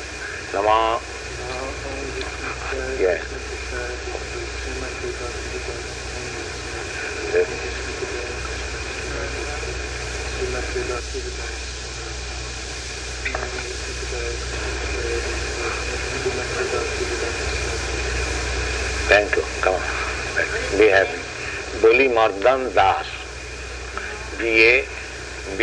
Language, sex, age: English, male, 50-69